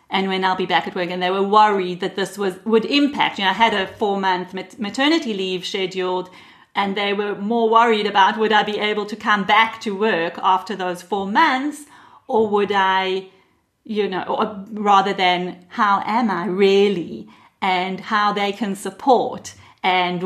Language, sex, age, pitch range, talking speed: English, female, 40-59, 185-225 Hz, 185 wpm